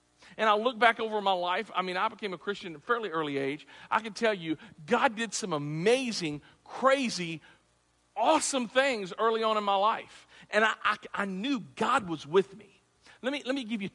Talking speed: 210 wpm